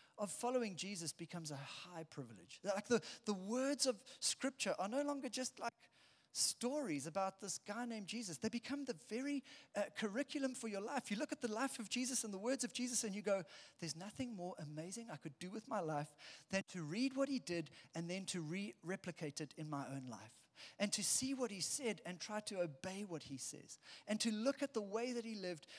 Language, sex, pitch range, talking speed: English, male, 165-235 Hz, 220 wpm